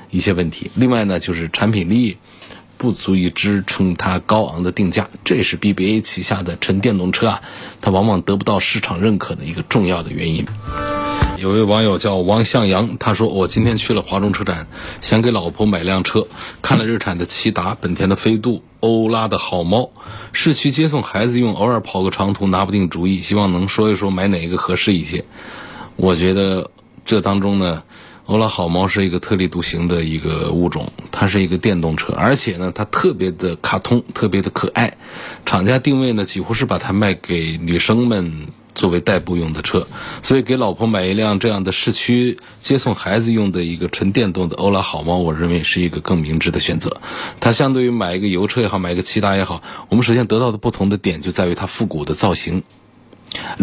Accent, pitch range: native, 90-110 Hz